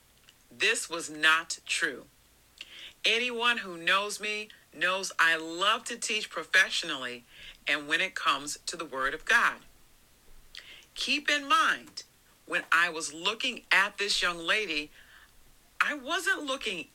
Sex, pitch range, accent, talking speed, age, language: female, 150-210 Hz, American, 130 wpm, 50-69, English